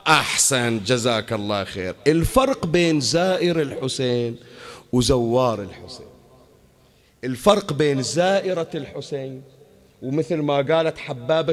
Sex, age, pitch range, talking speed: male, 50-69, 130-175 Hz, 95 wpm